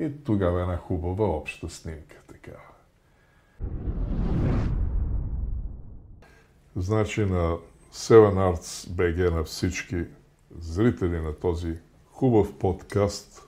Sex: male